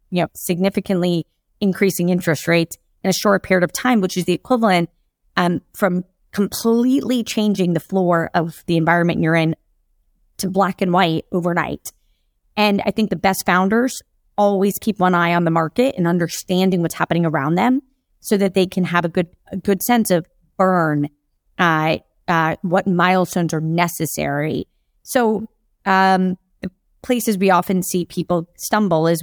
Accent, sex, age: American, female, 30-49